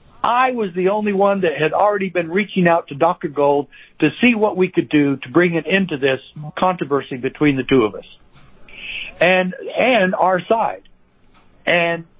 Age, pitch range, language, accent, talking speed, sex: 60-79, 145-200 Hz, English, American, 180 wpm, male